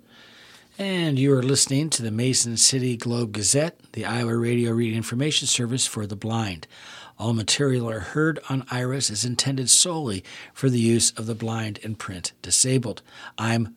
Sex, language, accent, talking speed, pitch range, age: male, English, American, 165 wpm, 110-135 Hz, 60-79